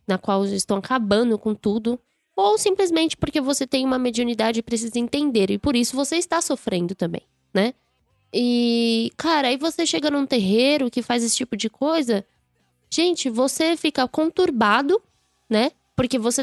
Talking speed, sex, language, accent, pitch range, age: 165 wpm, female, Portuguese, Brazilian, 220-280 Hz, 10-29